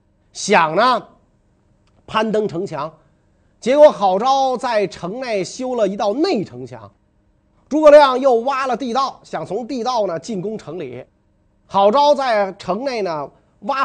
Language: Chinese